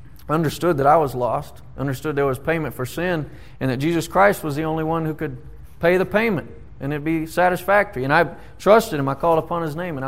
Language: English